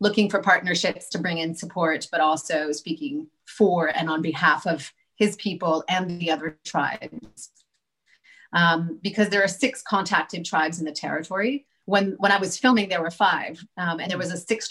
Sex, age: female, 30-49